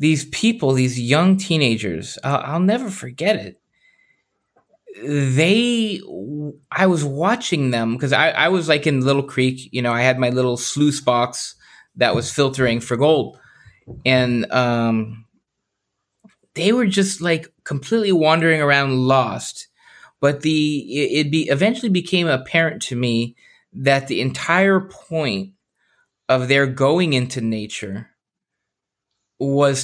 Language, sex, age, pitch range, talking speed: English, male, 20-39, 125-160 Hz, 125 wpm